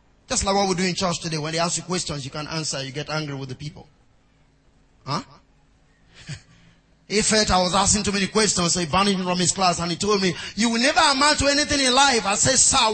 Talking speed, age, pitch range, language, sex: 245 wpm, 30-49, 125-205 Hz, English, male